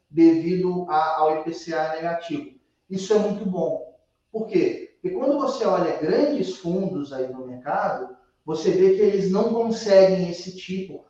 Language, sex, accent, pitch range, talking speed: Portuguese, male, Brazilian, 160-195 Hz, 145 wpm